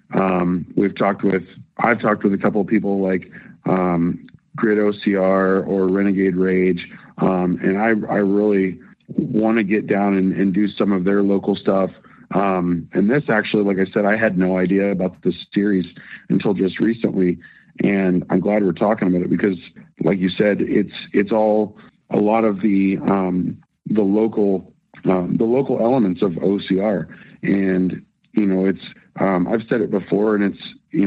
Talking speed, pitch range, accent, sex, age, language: 175 wpm, 90-100 Hz, American, male, 40-59, English